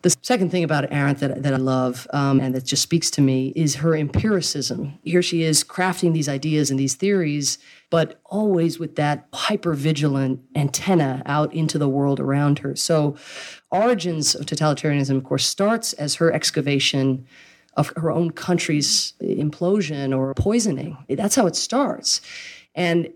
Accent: American